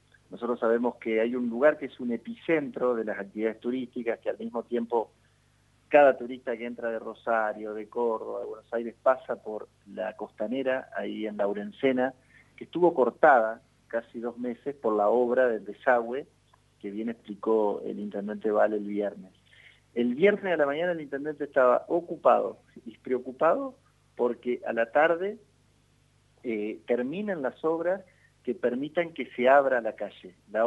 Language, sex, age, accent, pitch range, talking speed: Spanish, male, 40-59, Argentinian, 115-140 Hz, 160 wpm